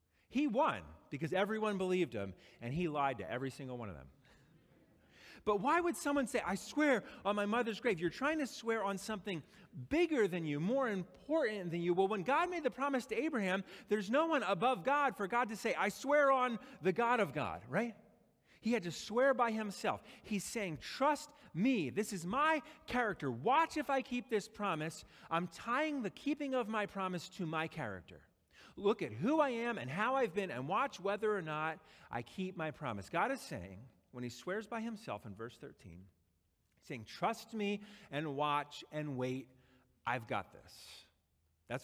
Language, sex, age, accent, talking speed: English, male, 40-59, American, 195 wpm